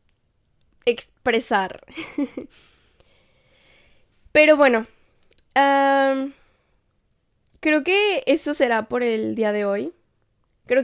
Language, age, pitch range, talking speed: Spanish, 10-29, 235-285 Hz, 70 wpm